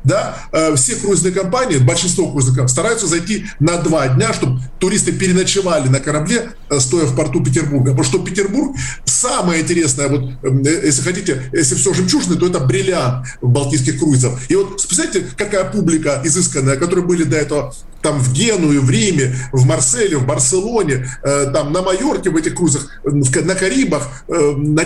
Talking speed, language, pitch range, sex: 155 wpm, Russian, 140-190 Hz, male